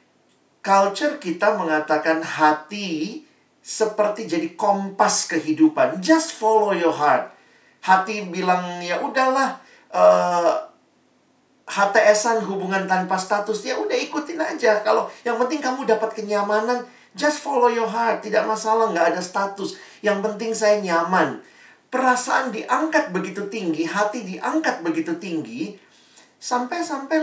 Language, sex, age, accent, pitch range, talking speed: Indonesian, male, 50-69, native, 165-250 Hz, 115 wpm